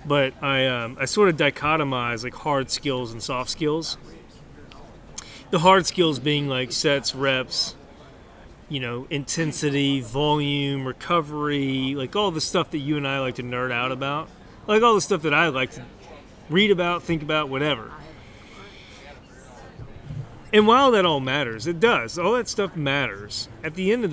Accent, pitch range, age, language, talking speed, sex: American, 125-165 Hz, 30-49, English, 165 wpm, male